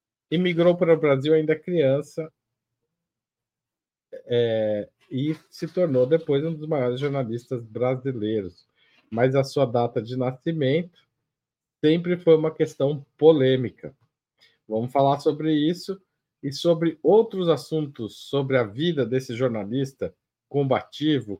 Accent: Brazilian